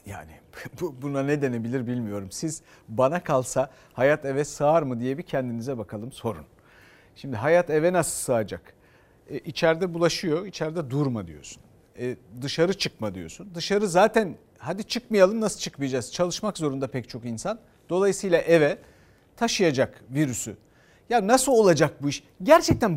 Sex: male